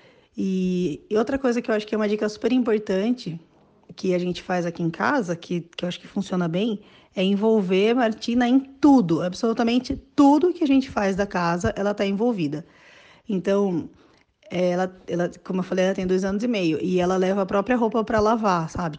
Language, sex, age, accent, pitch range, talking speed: Portuguese, female, 20-39, Brazilian, 175-215 Hz, 200 wpm